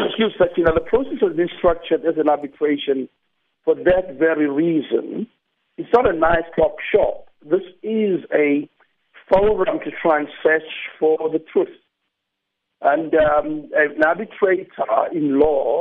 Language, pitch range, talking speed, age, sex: English, 150-195 Hz, 145 wpm, 50-69, male